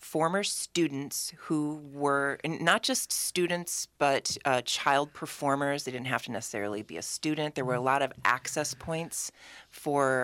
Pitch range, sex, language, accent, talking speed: 125-150 Hz, female, English, American, 160 wpm